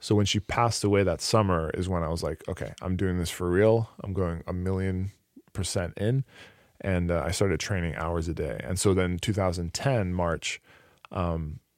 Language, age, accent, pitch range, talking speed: English, 20-39, American, 90-105 Hz, 195 wpm